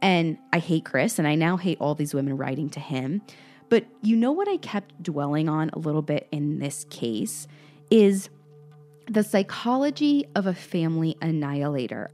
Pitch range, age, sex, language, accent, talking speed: 155-200 Hz, 20-39, female, English, American, 175 wpm